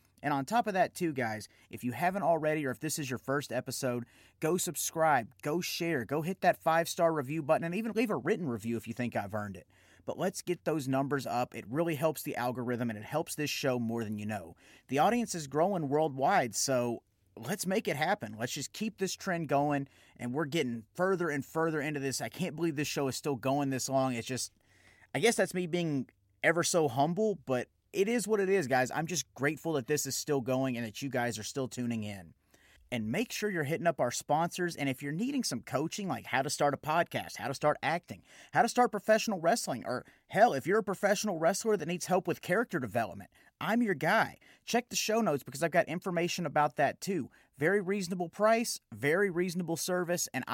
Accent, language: American, English